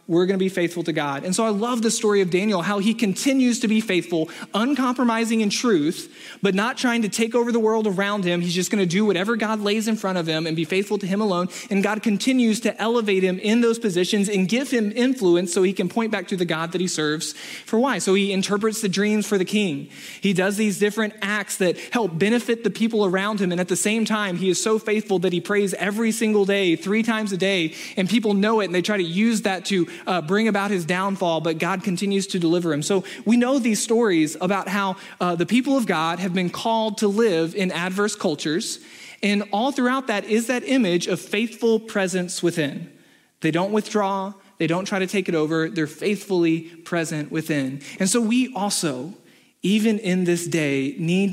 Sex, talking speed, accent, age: male, 225 wpm, American, 20-39